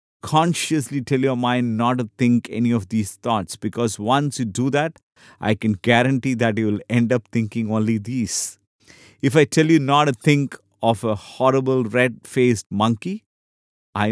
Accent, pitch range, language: Indian, 105-130 Hz, English